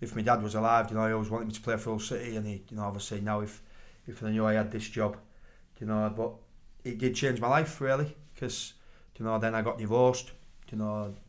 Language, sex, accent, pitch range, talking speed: English, male, British, 105-120 Hz, 255 wpm